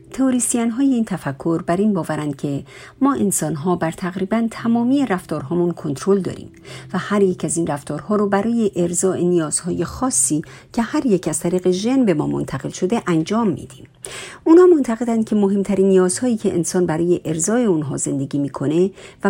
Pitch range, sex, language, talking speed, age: 155-220 Hz, female, Persian, 170 wpm, 50-69